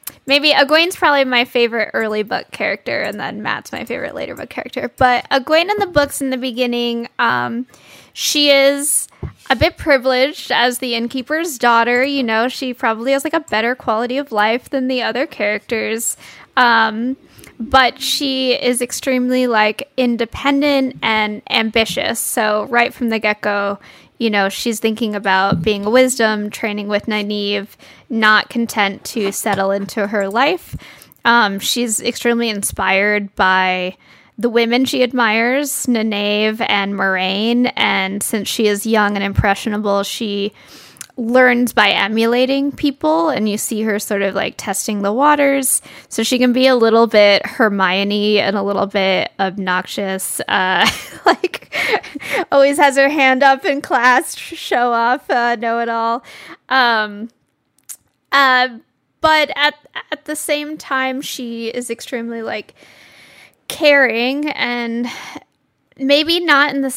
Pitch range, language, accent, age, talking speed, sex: 210-265 Hz, English, American, 10-29, 145 wpm, female